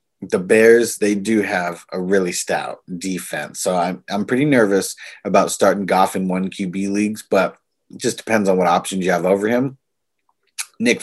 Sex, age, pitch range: male, 30-49, 90-105 Hz